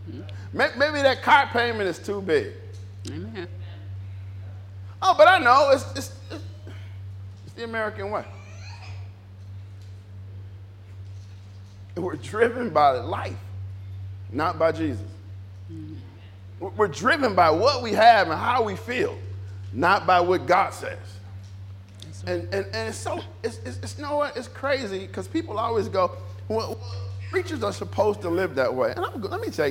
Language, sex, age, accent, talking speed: English, male, 40-59, American, 140 wpm